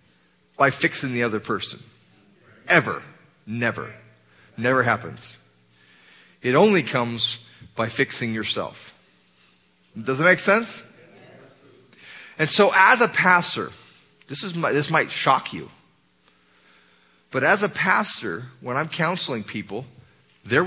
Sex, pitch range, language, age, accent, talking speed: male, 110-150 Hz, English, 40-59, American, 115 wpm